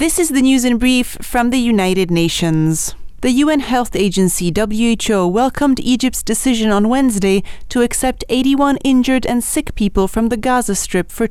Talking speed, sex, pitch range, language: 170 wpm, female, 210-260 Hz, English